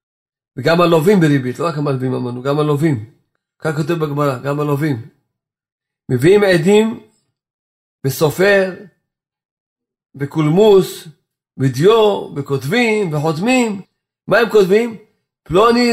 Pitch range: 155-210 Hz